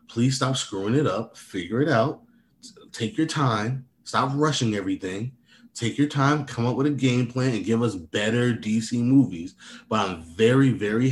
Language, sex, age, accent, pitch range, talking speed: English, male, 20-39, American, 105-125 Hz, 180 wpm